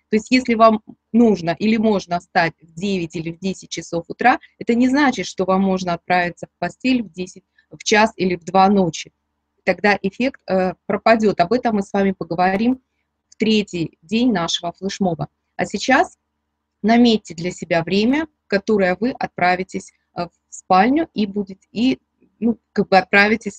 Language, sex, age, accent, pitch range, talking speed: Russian, female, 20-39, native, 185-235 Hz, 165 wpm